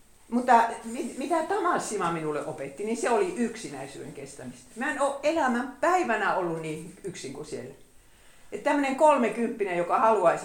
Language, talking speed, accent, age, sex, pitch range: Finnish, 150 wpm, native, 50-69, female, 185-270 Hz